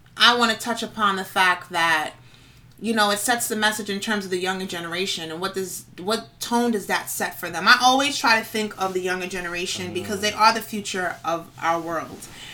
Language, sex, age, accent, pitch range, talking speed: English, female, 30-49, American, 180-220 Hz, 225 wpm